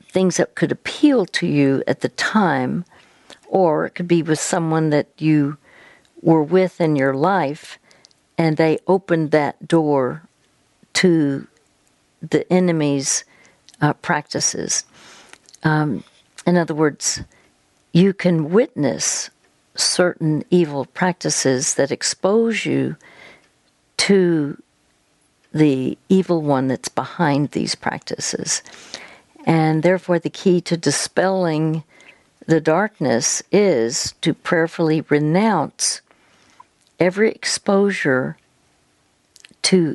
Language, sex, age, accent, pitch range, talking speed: English, female, 60-79, American, 150-180 Hz, 100 wpm